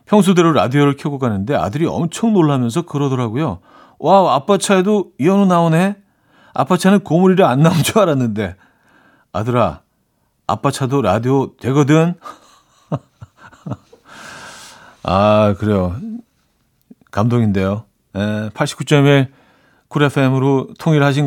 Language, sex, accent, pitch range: Korean, male, native, 110-155 Hz